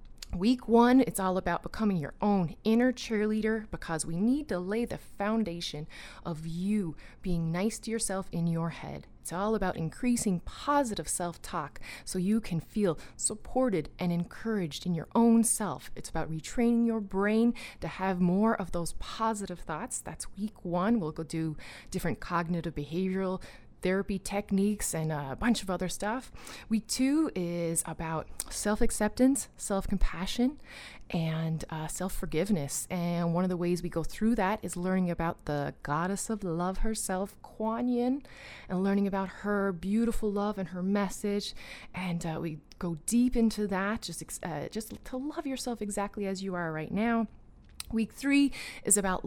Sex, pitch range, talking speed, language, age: female, 175-220 Hz, 160 wpm, English, 30-49